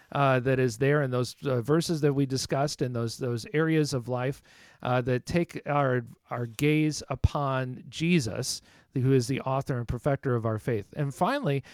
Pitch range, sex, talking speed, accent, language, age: 130-165 Hz, male, 185 wpm, American, English, 40-59